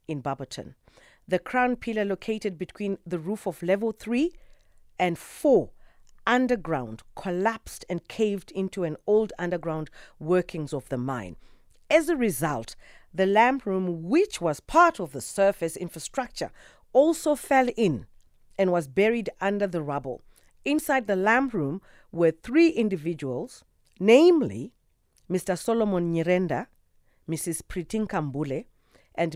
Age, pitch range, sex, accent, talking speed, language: 40-59, 160-225 Hz, female, South African, 125 wpm, English